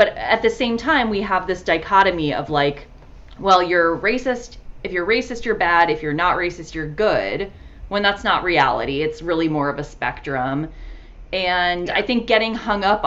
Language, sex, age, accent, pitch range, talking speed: English, female, 30-49, American, 150-200 Hz, 190 wpm